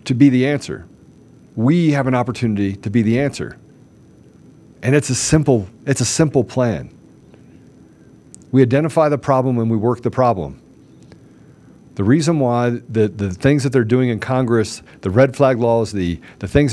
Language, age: English, 50-69